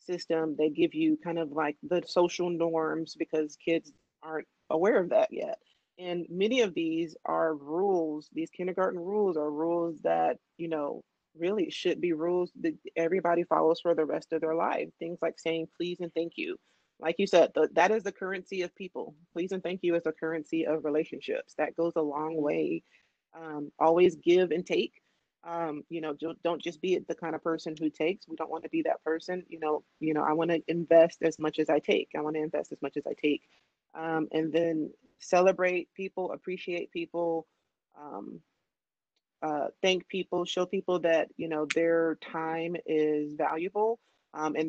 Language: English